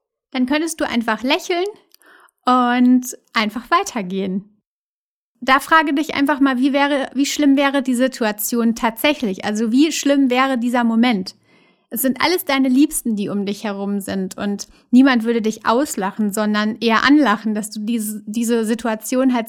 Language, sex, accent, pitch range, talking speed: German, female, German, 220-270 Hz, 155 wpm